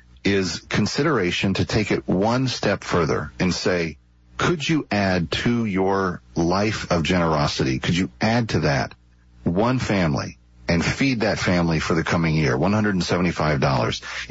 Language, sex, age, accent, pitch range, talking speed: English, male, 40-59, American, 85-115 Hz, 145 wpm